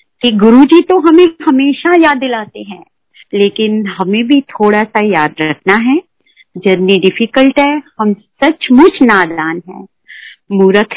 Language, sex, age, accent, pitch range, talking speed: Hindi, female, 50-69, native, 200-275 Hz, 130 wpm